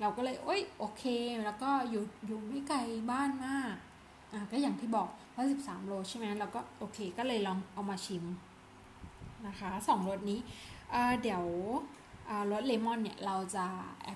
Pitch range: 190-255 Hz